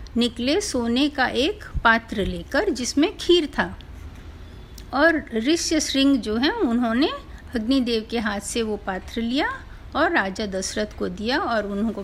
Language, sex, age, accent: Hindi, female, 50-69, native